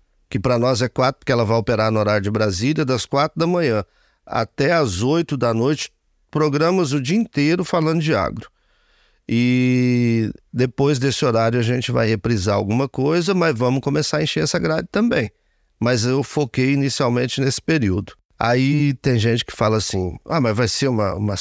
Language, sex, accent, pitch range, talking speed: Portuguese, male, Brazilian, 110-150 Hz, 180 wpm